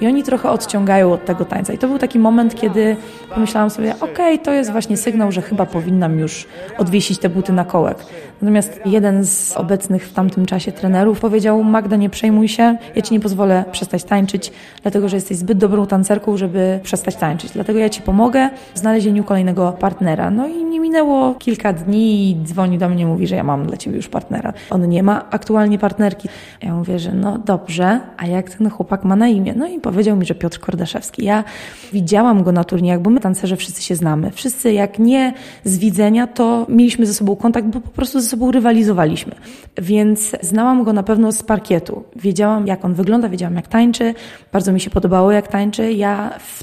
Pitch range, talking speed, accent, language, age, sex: 190-220 Hz, 200 wpm, native, Polish, 20-39, female